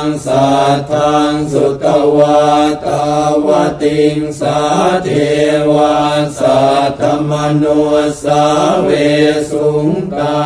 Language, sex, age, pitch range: Thai, male, 60-79, 145-150 Hz